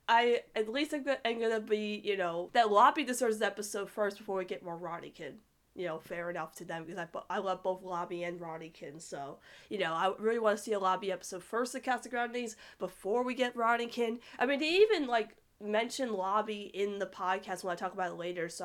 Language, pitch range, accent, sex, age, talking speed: English, 185-240 Hz, American, female, 20-39, 230 wpm